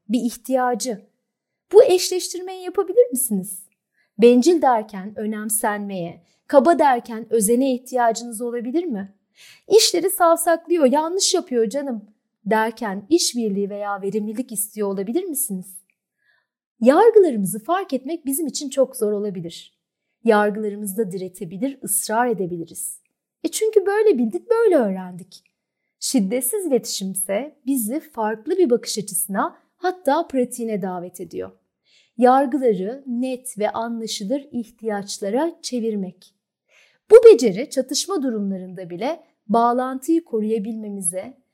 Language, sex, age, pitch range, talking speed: Turkish, female, 30-49, 205-290 Hz, 105 wpm